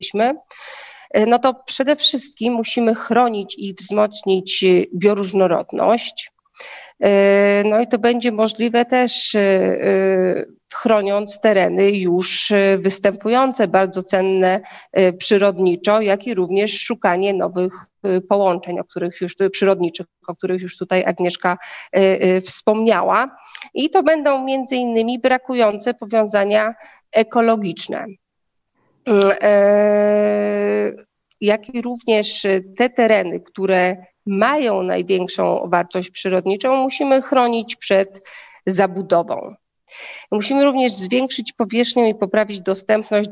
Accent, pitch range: native, 190-240 Hz